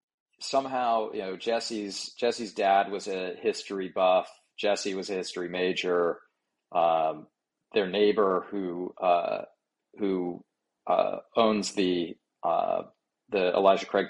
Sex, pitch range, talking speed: male, 90-110 Hz, 120 wpm